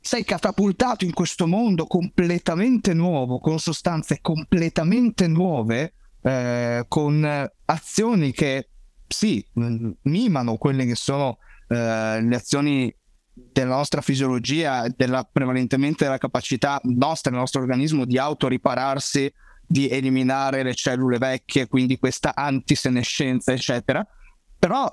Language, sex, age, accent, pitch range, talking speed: Italian, male, 30-49, native, 130-170 Hz, 110 wpm